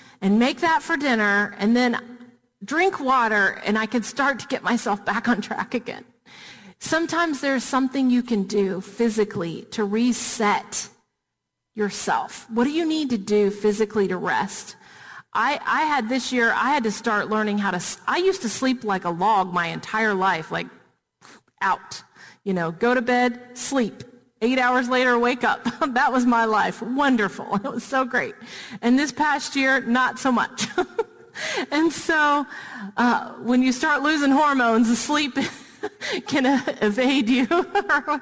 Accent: American